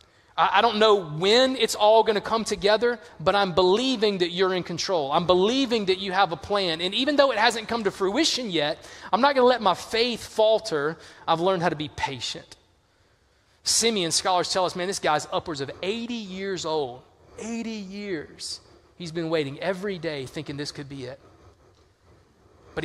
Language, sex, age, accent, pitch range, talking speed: English, male, 30-49, American, 155-200 Hz, 185 wpm